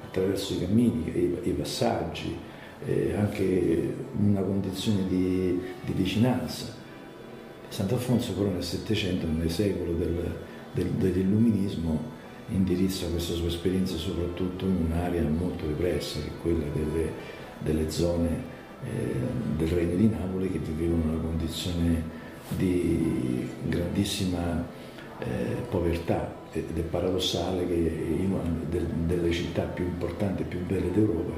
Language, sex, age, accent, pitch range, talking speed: Italian, male, 50-69, native, 85-95 Hz, 125 wpm